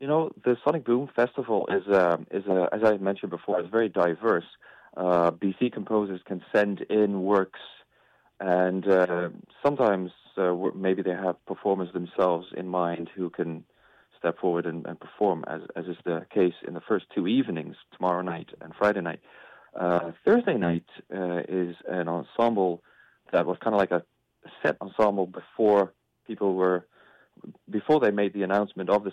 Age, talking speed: 30-49, 170 wpm